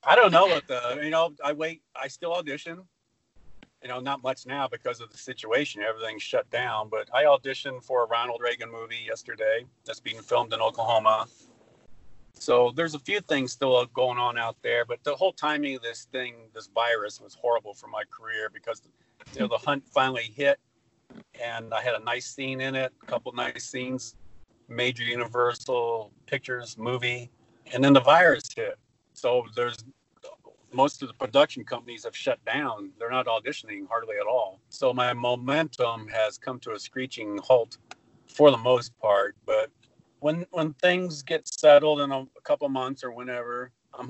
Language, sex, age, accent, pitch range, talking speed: English, male, 40-59, American, 115-145 Hz, 180 wpm